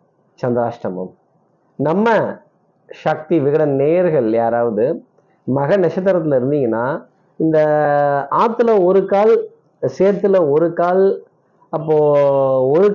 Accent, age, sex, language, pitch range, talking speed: native, 30-49, male, Tamil, 135-175 Hz, 85 wpm